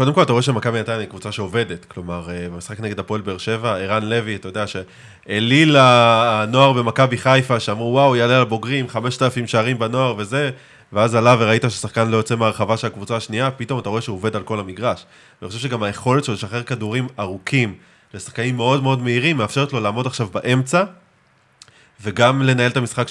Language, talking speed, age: Hebrew, 180 wpm, 20-39